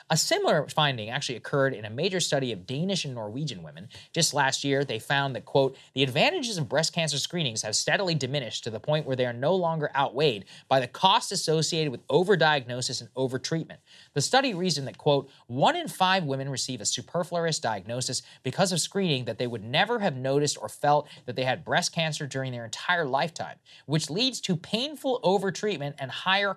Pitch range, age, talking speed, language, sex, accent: 125-170 Hz, 30-49, 195 wpm, English, male, American